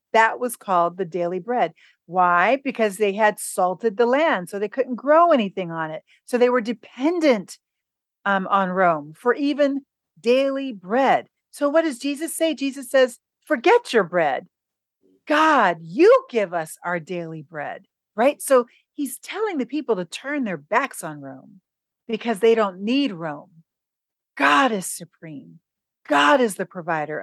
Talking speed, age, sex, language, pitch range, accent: 160 wpm, 40-59, female, English, 170-250 Hz, American